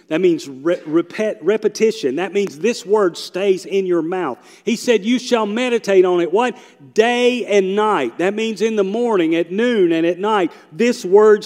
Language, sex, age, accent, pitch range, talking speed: English, male, 40-59, American, 140-210 Hz, 190 wpm